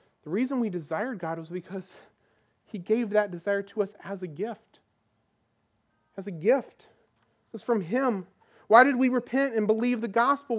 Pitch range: 165-235 Hz